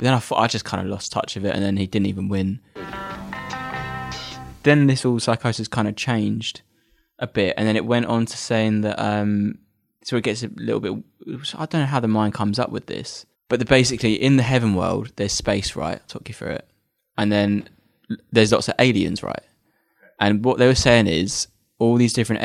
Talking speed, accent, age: 220 wpm, British, 20-39